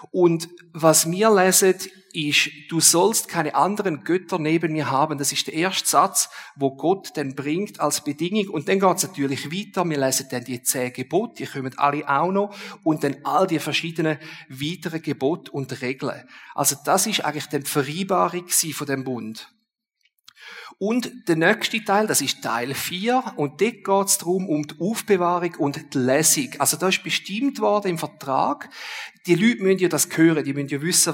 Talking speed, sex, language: 185 wpm, male, German